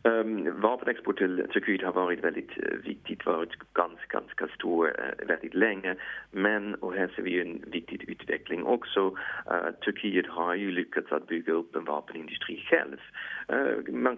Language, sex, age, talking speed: English, male, 40-59, 150 wpm